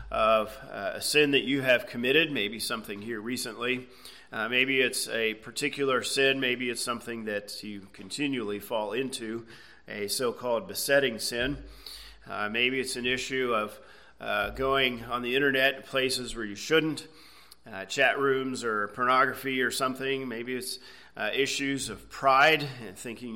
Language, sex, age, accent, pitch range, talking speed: English, male, 40-59, American, 115-145 Hz, 155 wpm